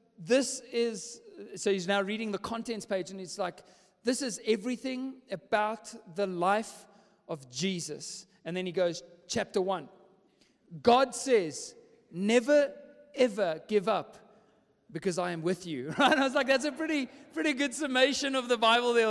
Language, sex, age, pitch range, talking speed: English, male, 40-59, 195-260 Hz, 160 wpm